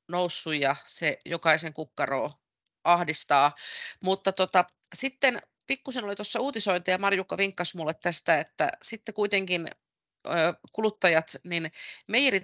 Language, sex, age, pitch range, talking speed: Finnish, female, 30-49, 150-175 Hz, 120 wpm